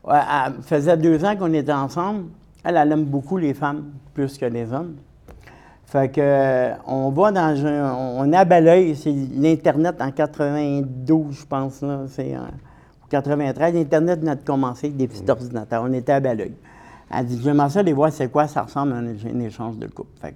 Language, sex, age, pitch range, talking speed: French, male, 50-69, 120-150 Hz, 195 wpm